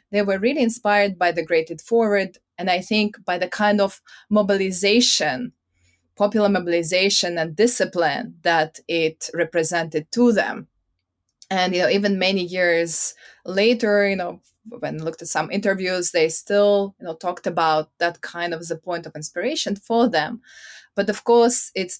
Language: English